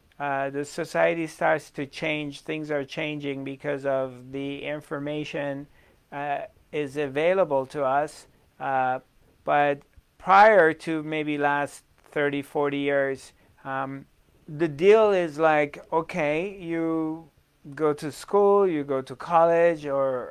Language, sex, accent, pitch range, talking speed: English, male, American, 140-175 Hz, 120 wpm